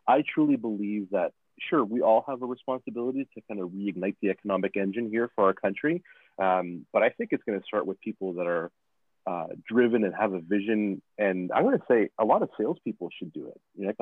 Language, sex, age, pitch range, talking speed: English, male, 30-49, 100-130 Hz, 230 wpm